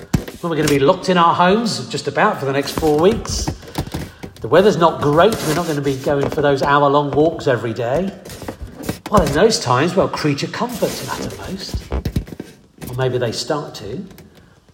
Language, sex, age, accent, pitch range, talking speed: English, male, 50-69, British, 135-180 Hz, 190 wpm